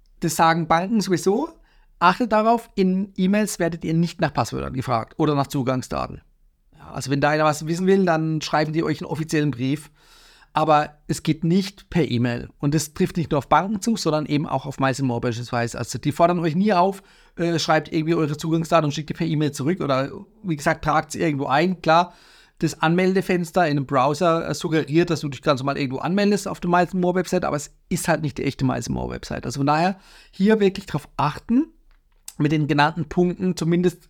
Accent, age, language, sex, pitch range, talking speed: German, 40-59, German, male, 145-185 Hz, 195 wpm